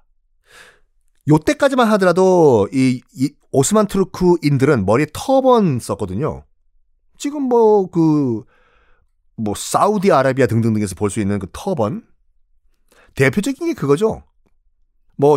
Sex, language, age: male, Korean, 40-59